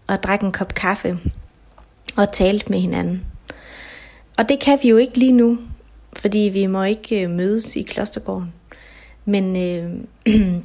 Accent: native